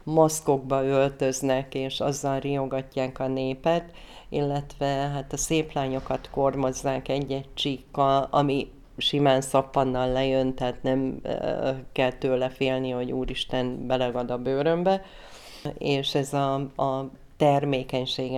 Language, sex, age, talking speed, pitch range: Hungarian, female, 30-49, 110 wpm, 130-145 Hz